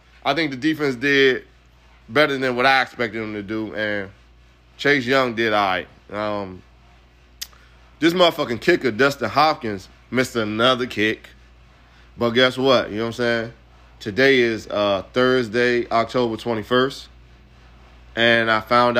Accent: American